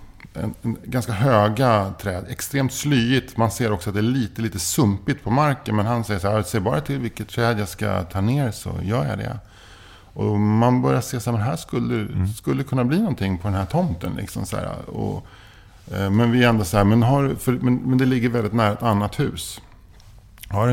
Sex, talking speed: male, 220 wpm